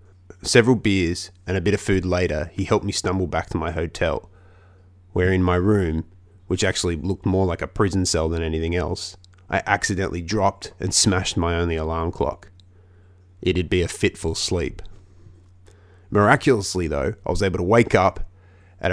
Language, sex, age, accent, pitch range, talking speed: English, male, 20-39, Australian, 90-100 Hz, 170 wpm